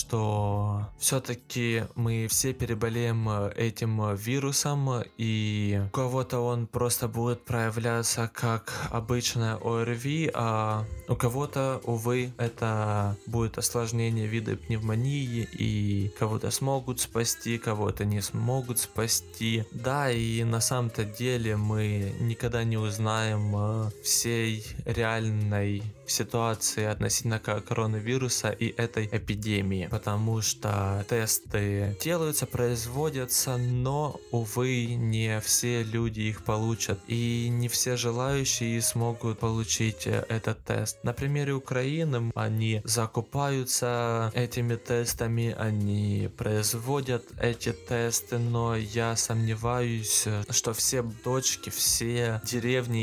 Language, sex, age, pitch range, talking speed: Russian, male, 20-39, 110-120 Hz, 100 wpm